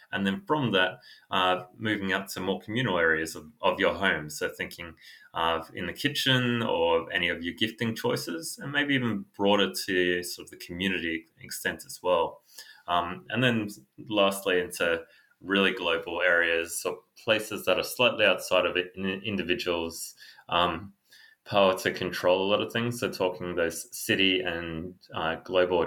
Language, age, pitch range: English, 20-39, 90-145 Hz